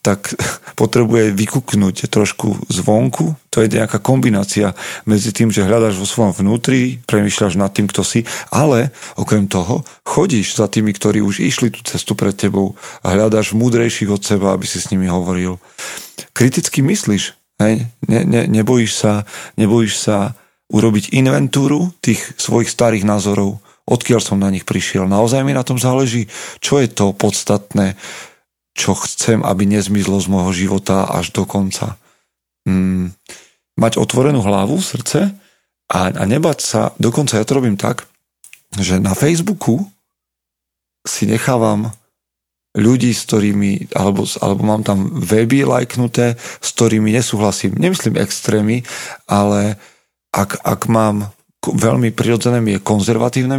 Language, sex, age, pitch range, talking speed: Slovak, male, 40-59, 100-120 Hz, 135 wpm